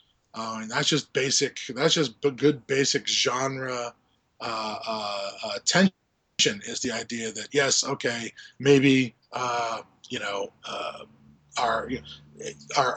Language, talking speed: English, 130 wpm